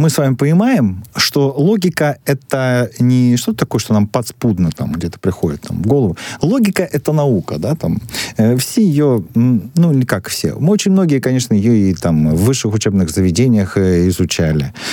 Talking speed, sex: 175 wpm, male